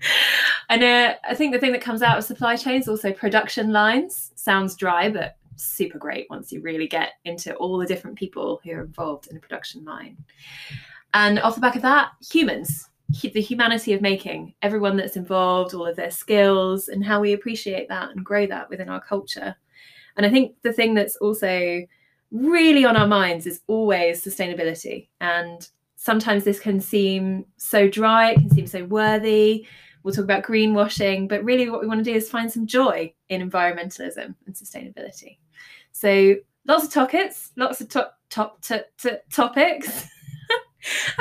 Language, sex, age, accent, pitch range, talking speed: English, female, 20-39, British, 185-235 Hz, 170 wpm